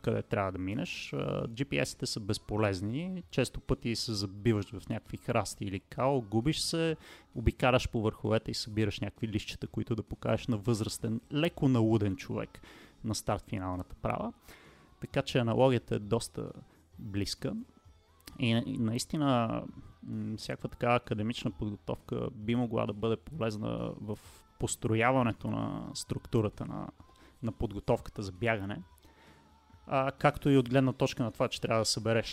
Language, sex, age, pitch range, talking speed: Bulgarian, male, 30-49, 105-125 Hz, 135 wpm